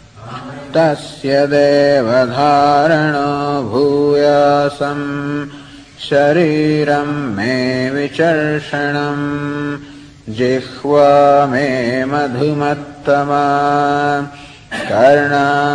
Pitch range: 140-145 Hz